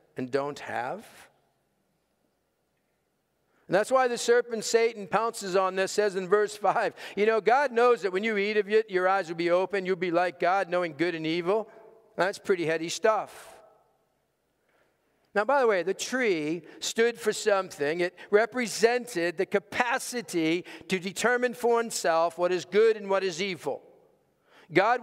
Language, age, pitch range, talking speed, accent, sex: English, 50-69, 180-245 Hz, 165 wpm, American, male